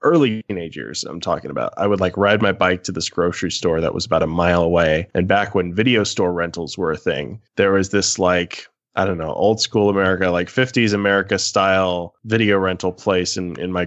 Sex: male